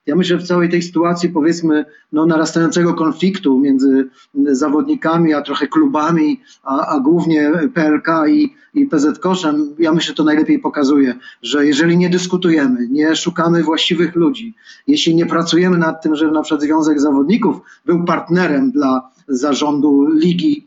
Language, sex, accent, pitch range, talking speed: Polish, male, native, 155-195 Hz, 155 wpm